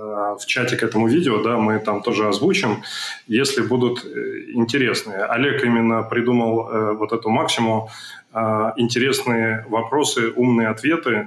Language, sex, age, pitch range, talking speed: Russian, male, 20-39, 110-125 Hz, 135 wpm